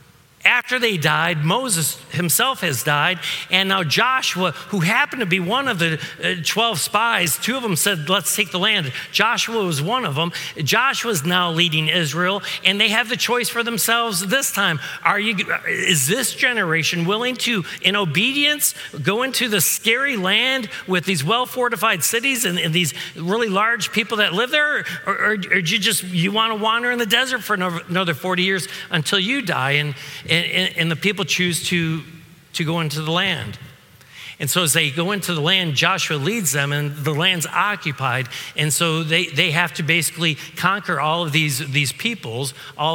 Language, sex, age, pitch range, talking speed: English, male, 50-69, 155-210 Hz, 185 wpm